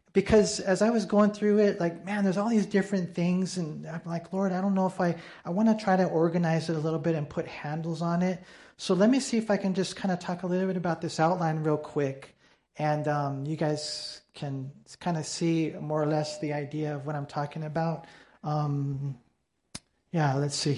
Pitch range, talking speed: 145-185 Hz, 230 wpm